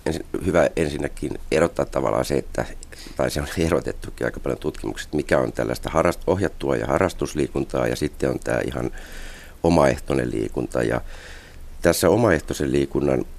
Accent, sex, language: native, male, Finnish